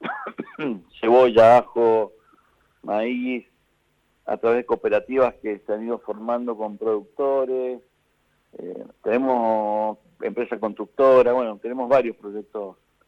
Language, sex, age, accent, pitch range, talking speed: Spanish, male, 50-69, Argentinian, 110-130 Hz, 105 wpm